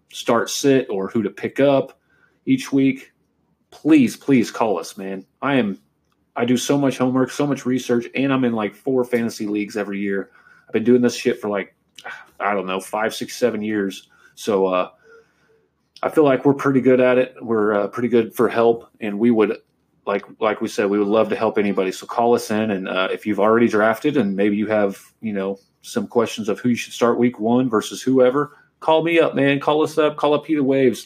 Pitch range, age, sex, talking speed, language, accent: 100-130 Hz, 30-49, male, 220 wpm, English, American